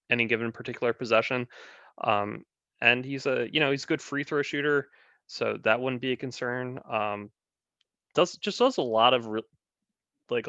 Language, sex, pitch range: English, male, 105-130 Hz